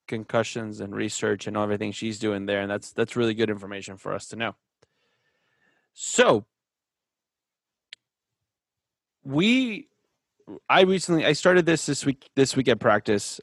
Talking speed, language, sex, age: 145 wpm, English, male, 20-39